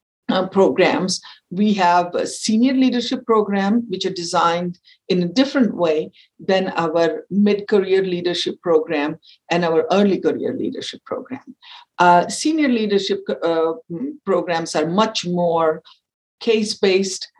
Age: 60-79